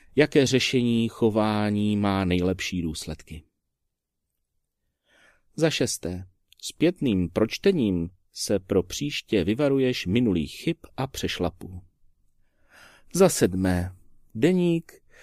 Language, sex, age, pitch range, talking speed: Czech, male, 40-59, 95-140 Hz, 85 wpm